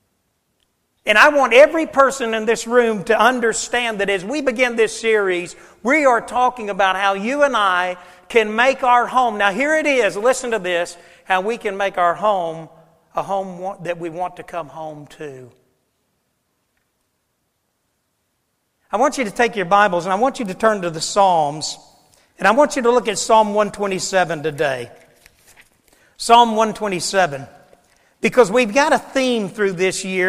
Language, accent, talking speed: English, American, 170 wpm